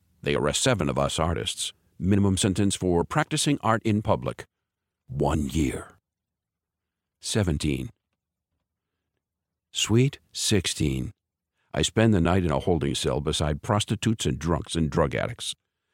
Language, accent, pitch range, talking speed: English, American, 85-105 Hz, 125 wpm